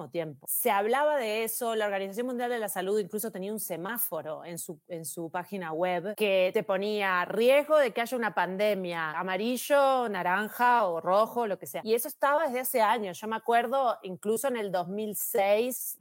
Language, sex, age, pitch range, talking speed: Spanish, female, 30-49, 190-235 Hz, 190 wpm